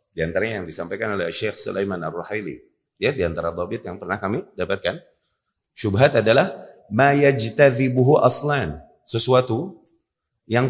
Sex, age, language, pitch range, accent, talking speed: male, 30-49, Indonesian, 105-145 Hz, native, 125 wpm